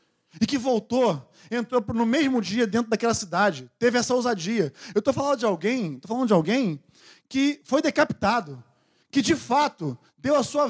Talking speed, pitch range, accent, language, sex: 175 wpm, 215-265 Hz, Brazilian, Portuguese, male